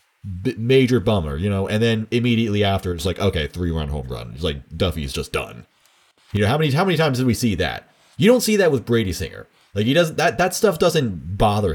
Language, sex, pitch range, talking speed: English, male, 95-145 Hz, 235 wpm